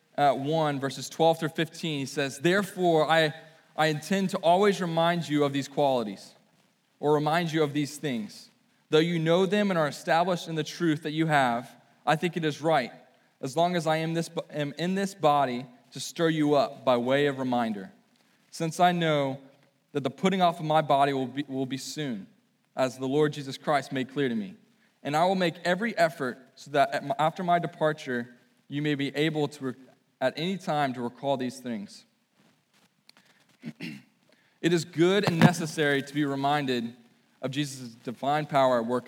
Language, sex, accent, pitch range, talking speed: English, male, American, 140-180 Hz, 190 wpm